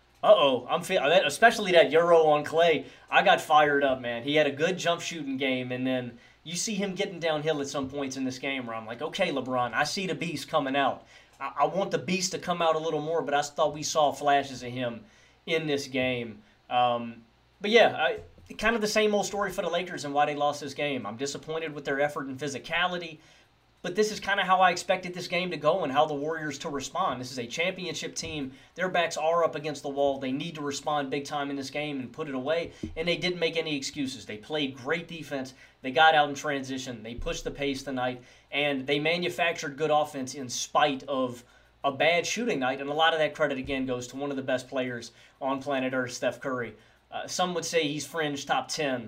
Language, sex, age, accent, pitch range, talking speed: English, male, 30-49, American, 135-165 Hz, 235 wpm